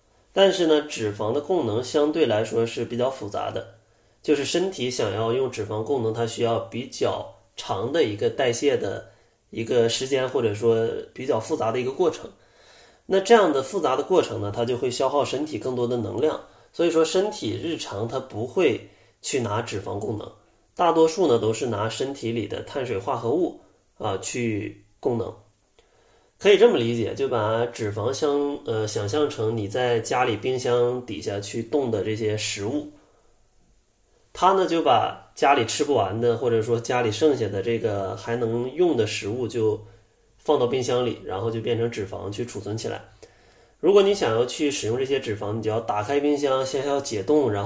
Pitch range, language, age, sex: 110-155 Hz, Chinese, 20-39, male